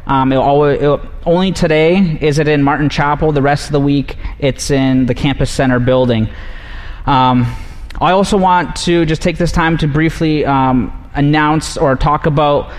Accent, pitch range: American, 130-160 Hz